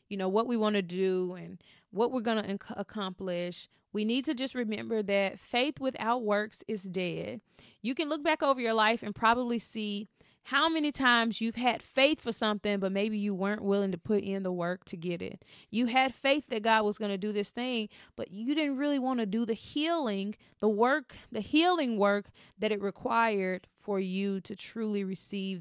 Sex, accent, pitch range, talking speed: female, American, 195-235 Hz, 205 wpm